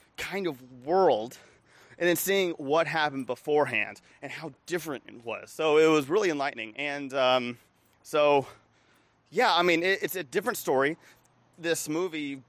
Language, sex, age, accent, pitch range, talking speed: English, male, 30-49, American, 130-175 Hz, 155 wpm